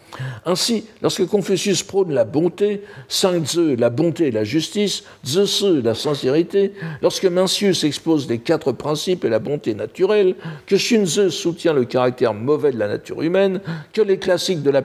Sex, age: male, 60-79